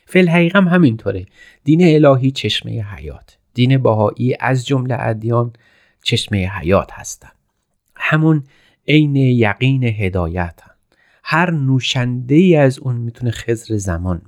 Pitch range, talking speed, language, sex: 105-140 Hz, 110 wpm, Persian, male